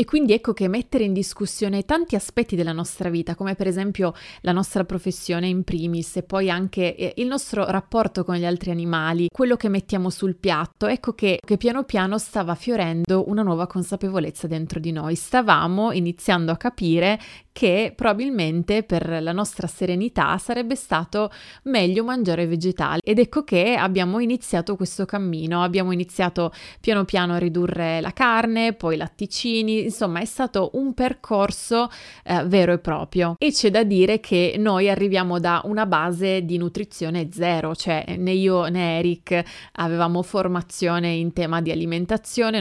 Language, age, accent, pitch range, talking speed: Italian, 20-39, native, 175-210 Hz, 160 wpm